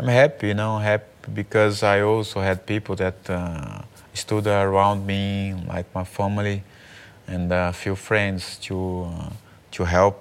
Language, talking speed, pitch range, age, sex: English, 160 wpm, 90-105 Hz, 20-39, male